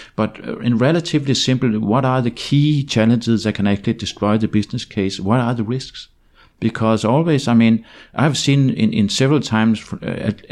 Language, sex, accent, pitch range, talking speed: Danish, male, native, 105-125 Hz, 185 wpm